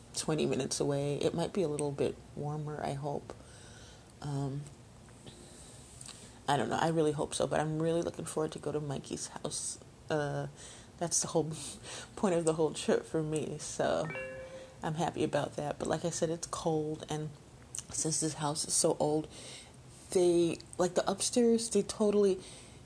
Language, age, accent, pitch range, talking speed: English, 30-49, American, 140-175 Hz, 170 wpm